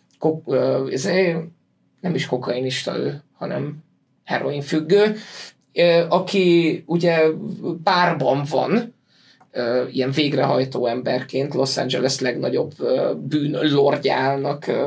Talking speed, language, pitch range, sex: 75 wpm, Hungarian, 135-185 Hz, male